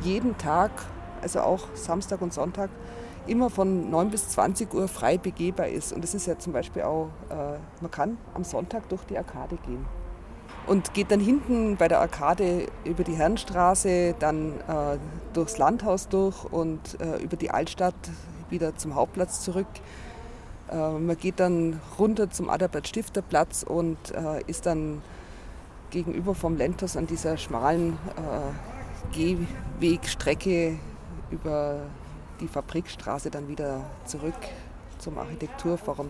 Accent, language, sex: German, German, female